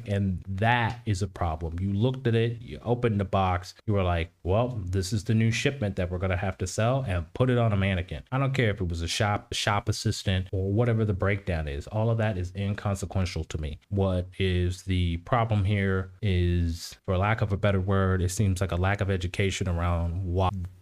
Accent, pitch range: American, 95-120 Hz